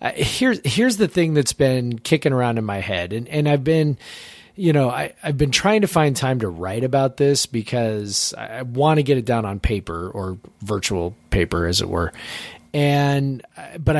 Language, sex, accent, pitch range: English, male, American, 110-145 Hz